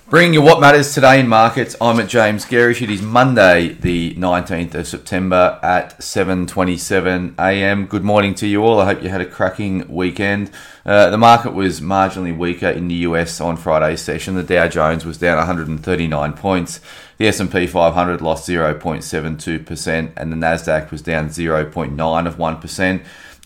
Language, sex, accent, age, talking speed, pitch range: English, male, Australian, 30-49, 165 wpm, 80-95 Hz